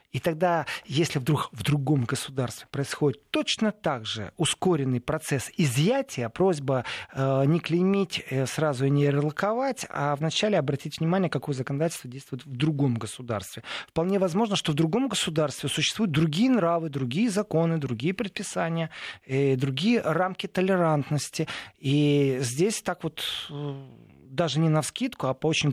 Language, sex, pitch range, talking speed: Russian, male, 140-170 Hz, 135 wpm